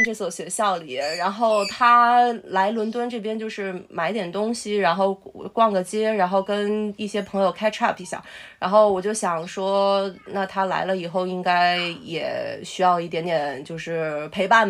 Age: 20-39